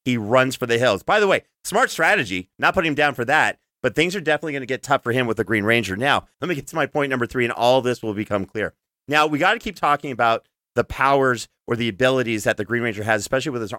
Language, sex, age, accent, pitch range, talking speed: English, male, 30-49, American, 110-140 Hz, 285 wpm